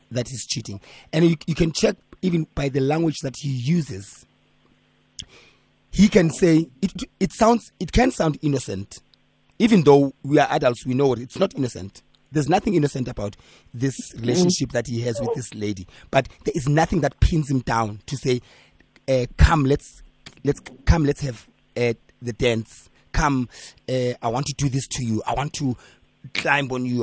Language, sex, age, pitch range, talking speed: English, male, 30-49, 120-155 Hz, 185 wpm